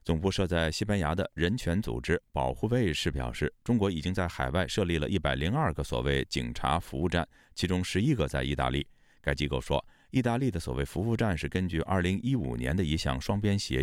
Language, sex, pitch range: Chinese, male, 70-100 Hz